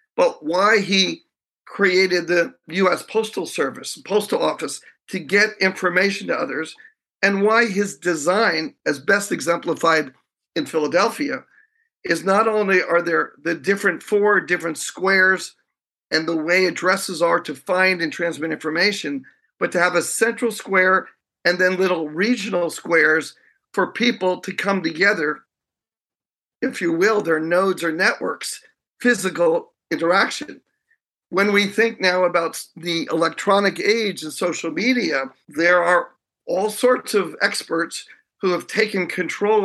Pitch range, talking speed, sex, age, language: 170-210 Hz, 135 wpm, male, 50-69, English